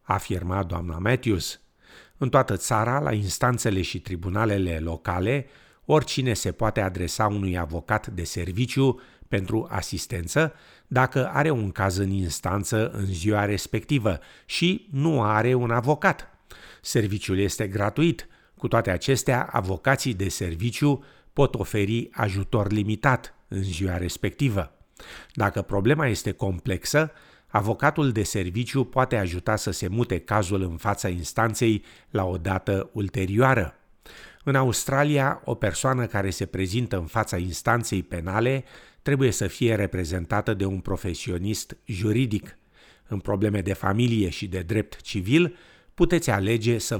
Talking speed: 130 wpm